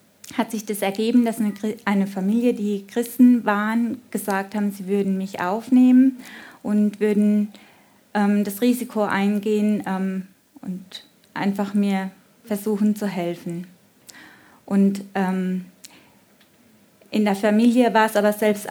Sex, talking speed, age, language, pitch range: female, 120 wpm, 20-39, German, 200-230 Hz